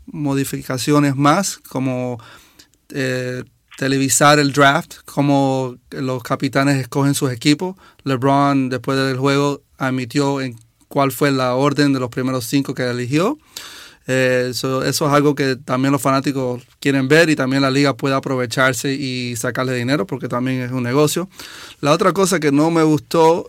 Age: 30-49